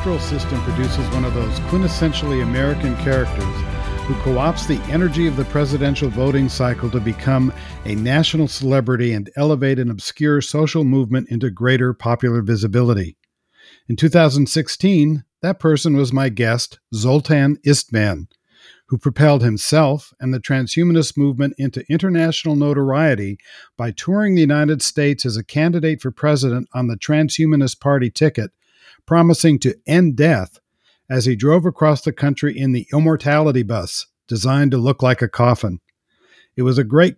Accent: American